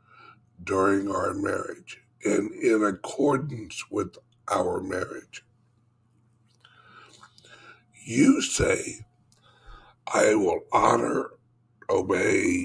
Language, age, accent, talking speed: English, 60-79, American, 70 wpm